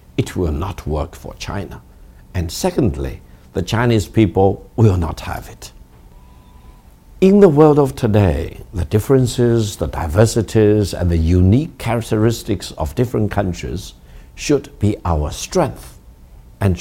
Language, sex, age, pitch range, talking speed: English, male, 60-79, 75-120 Hz, 130 wpm